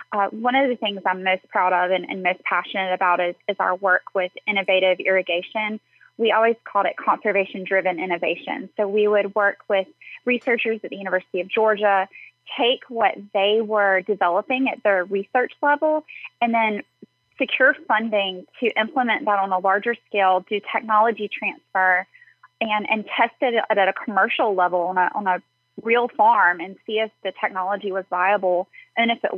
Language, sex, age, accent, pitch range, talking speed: English, female, 20-39, American, 190-225 Hz, 175 wpm